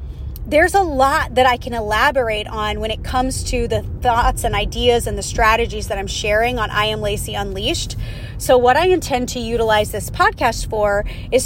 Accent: American